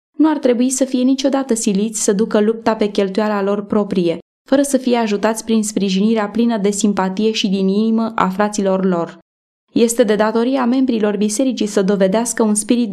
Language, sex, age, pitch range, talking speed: Romanian, female, 20-39, 205-245 Hz, 175 wpm